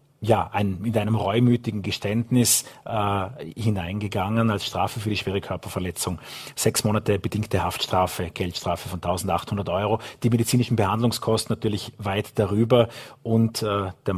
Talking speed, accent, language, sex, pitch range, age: 125 wpm, Austrian, German, male, 100-120 Hz, 40-59